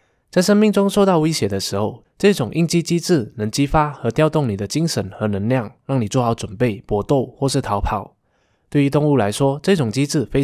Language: Chinese